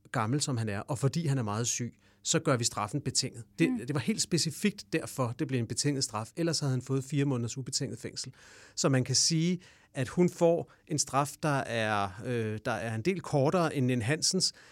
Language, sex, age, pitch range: English, male, 40-59, 120-150 Hz